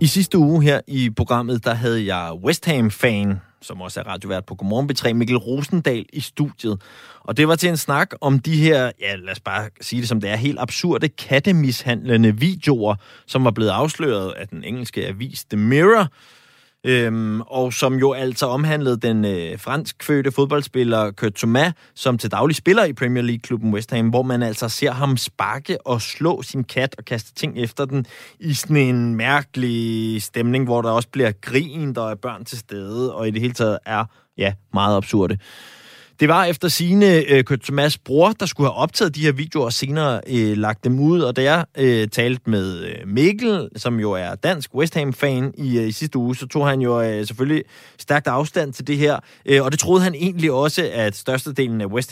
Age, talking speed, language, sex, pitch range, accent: 20-39, 200 wpm, Danish, male, 110-145 Hz, native